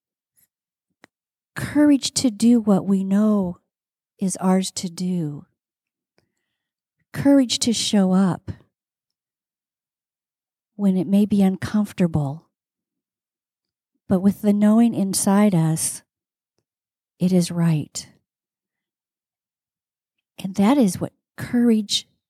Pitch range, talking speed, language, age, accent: 165-200 Hz, 90 wpm, English, 50-69, American